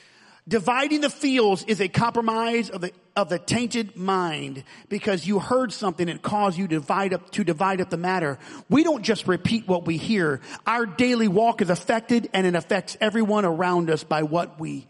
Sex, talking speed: male, 195 wpm